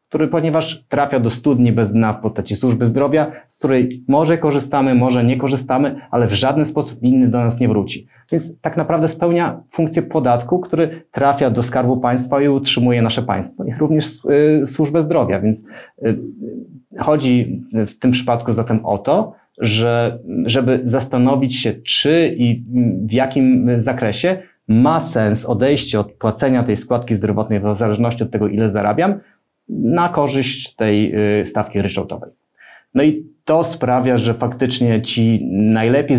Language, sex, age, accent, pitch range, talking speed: Polish, male, 30-49, native, 110-135 Hz, 150 wpm